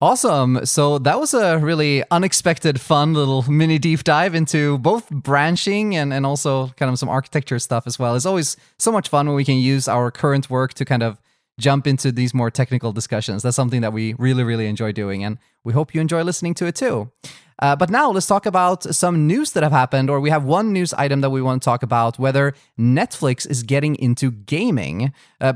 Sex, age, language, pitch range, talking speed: male, 20-39, English, 130-190 Hz, 220 wpm